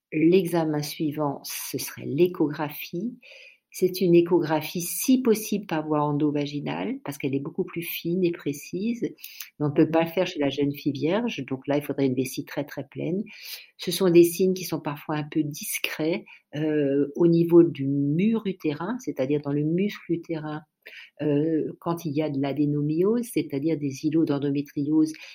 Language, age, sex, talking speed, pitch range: French, 50-69, female, 175 wpm, 150-190 Hz